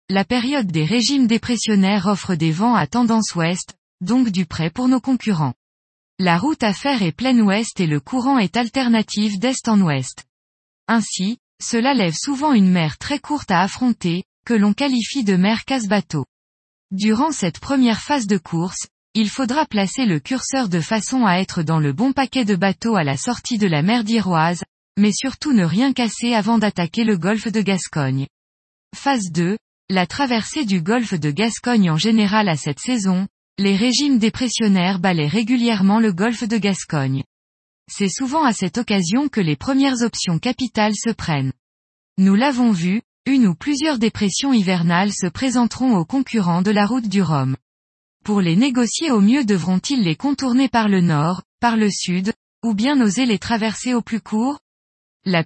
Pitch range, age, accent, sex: 180-245 Hz, 20-39, French, female